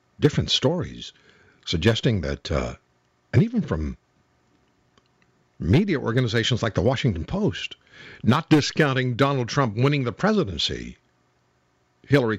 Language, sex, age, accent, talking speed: English, male, 60-79, American, 105 wpm